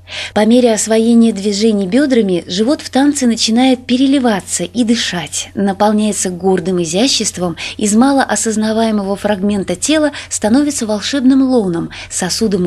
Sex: female